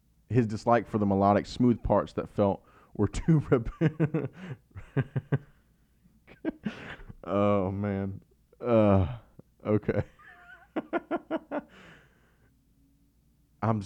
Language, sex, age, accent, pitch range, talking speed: English, male, 20-39, American, 95-115 Hz, 75 wpm